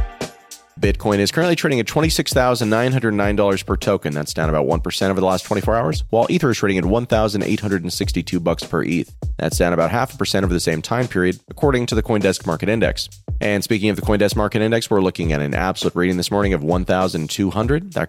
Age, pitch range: 30-49, 85-110 Hz